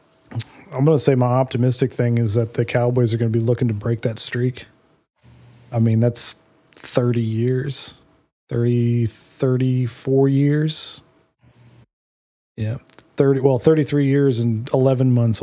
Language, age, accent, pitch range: English, 20-39, American, 115-130 Hz